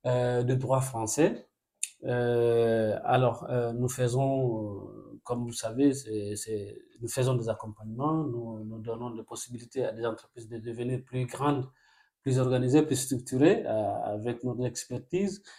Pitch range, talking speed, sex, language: 120-145 Hz, 145 wpm, male, French